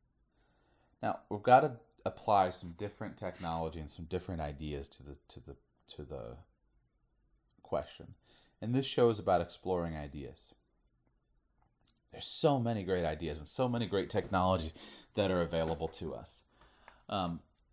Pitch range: 90-120 Hz